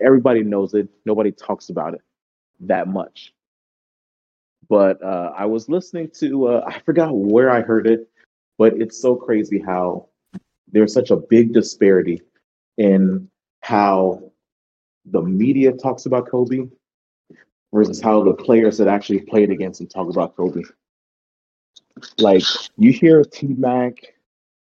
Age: 30-49